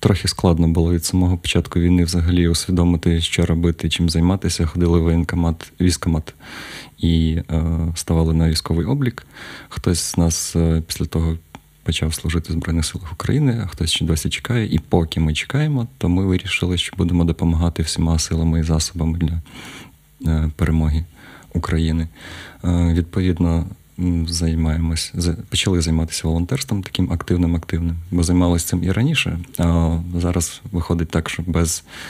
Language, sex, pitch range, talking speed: Ukrainian, male, 85-95 Hz, 140 wpm